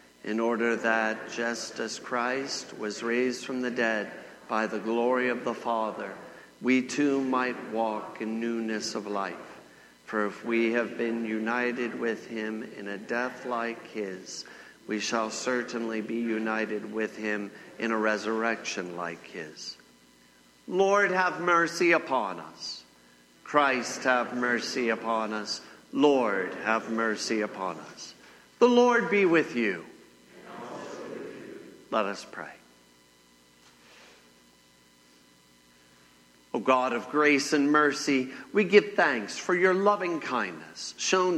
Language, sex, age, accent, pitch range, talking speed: English, male, 50-69, American, 110-145 Hz, 125 wpm